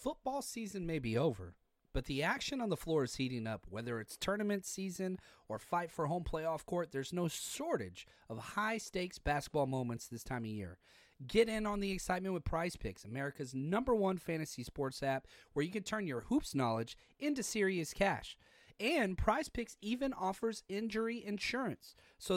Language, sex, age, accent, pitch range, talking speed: English, male, 30-49, American, 140-220 Hz, 175 wpm